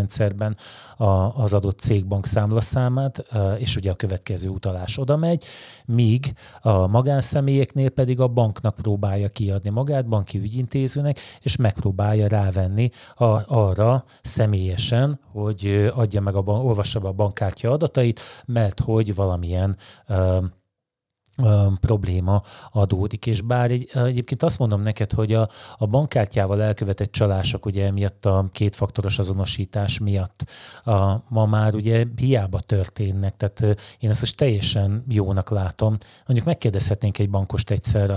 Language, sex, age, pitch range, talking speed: Hungarian, male, 30-49, 100-120 Hz, 125 wpm